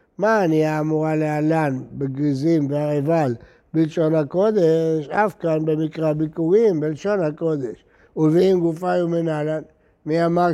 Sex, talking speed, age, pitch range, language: male, 115 wpm, 60-79, 155-175 Hz, Hebrew